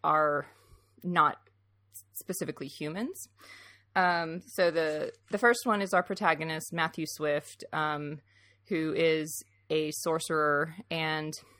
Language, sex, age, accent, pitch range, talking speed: English, female, 30-49, American, 145-170 Hz, 110 wpm